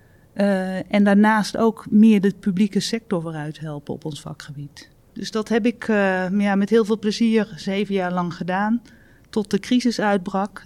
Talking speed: 175 wpm